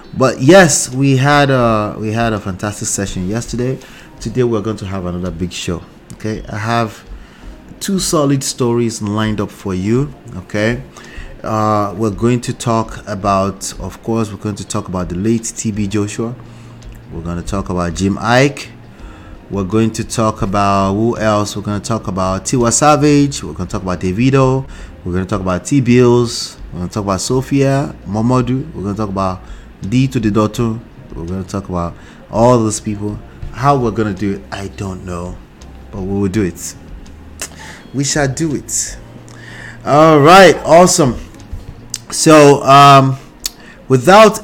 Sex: male